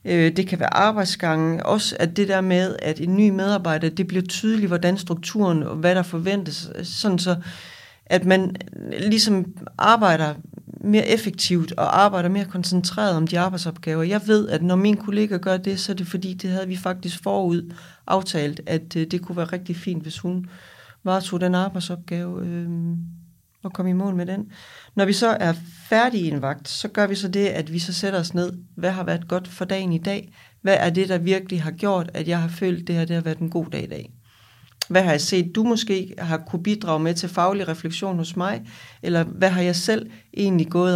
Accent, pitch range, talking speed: native, 170-195 Hz, 210 wpm